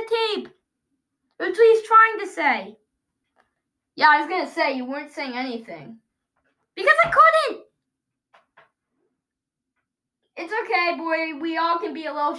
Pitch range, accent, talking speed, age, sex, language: 250-355 Hz, American, 130 wpm, 20-39, female, English